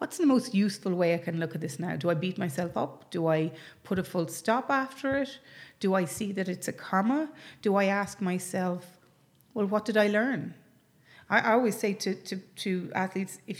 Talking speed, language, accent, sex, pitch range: 210 wpm, English, Irish, female, 180-220 Hz